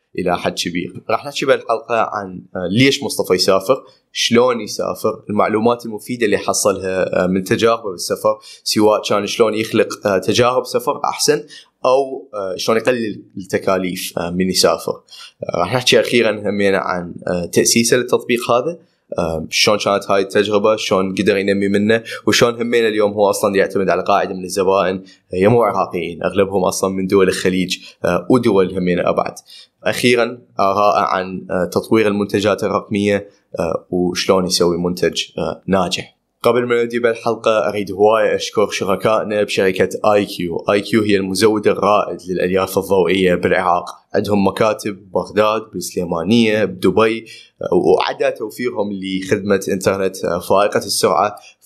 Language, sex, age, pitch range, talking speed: Arabic, male, 20-39, 95-115 Hz, 125 wpm